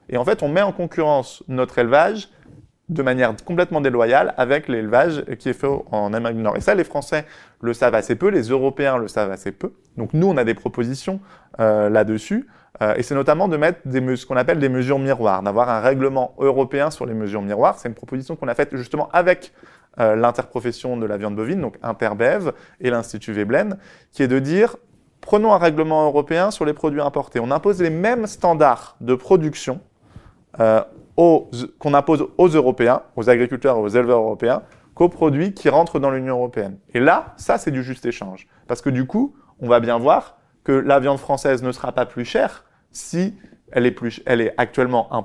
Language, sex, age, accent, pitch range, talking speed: French, male, 20-39, French, 115-155 Hz, 205 wpm